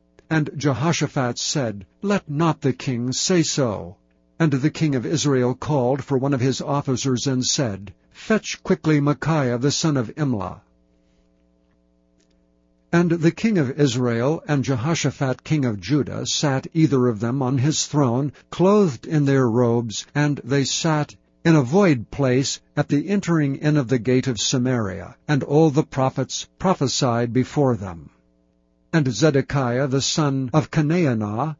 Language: English